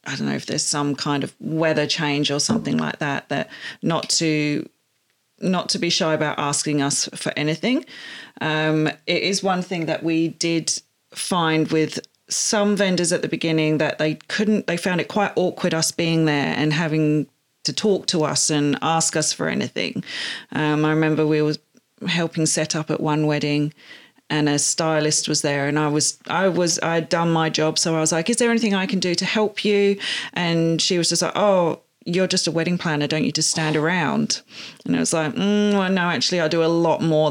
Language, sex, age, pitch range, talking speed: English, female, 40-59, 150-175 Hz, 210 wpm